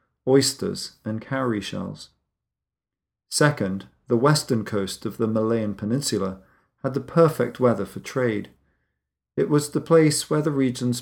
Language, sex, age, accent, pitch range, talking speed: English, male, 40-59, British, 105-130 Hz, 135 wpm